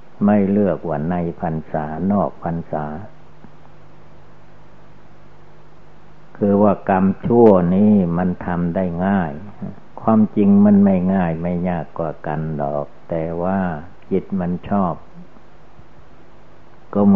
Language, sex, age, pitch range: Thai, male, 60-79, 85-105 Hz